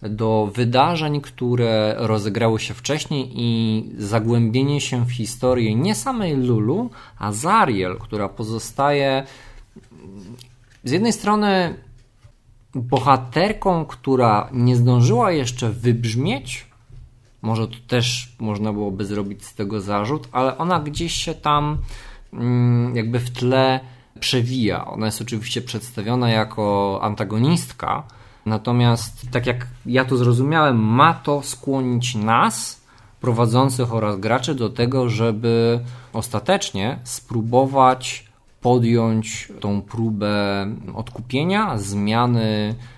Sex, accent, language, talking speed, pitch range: male, native, Polish, 105 wpm, 110-130 Hz